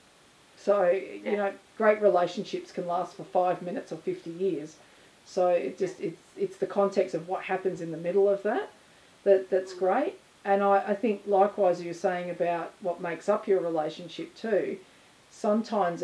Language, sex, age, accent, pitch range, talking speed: English, female, 40-59, Australian, 175-210 Hz, 170 wpm